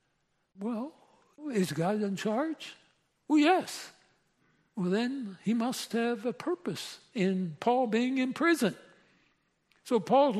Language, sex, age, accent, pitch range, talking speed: English, male, 60-79, American, 195-255 Hz, 120 wpm